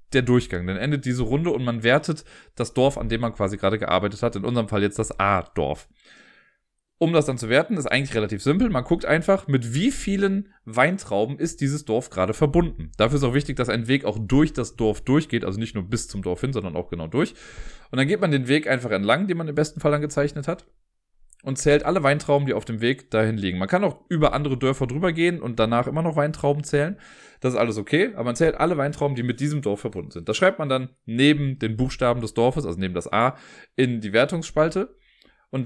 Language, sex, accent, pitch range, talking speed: German, male, German, 110-150 Hz, 235 wpm